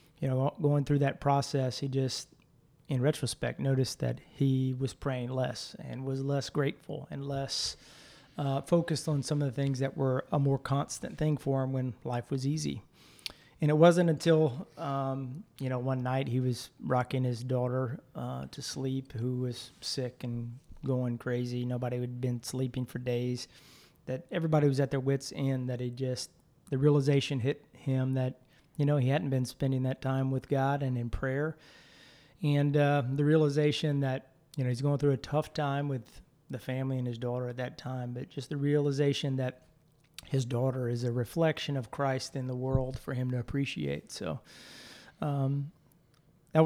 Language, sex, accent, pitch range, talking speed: English, male, American, 130-145 Hz, 185 wpm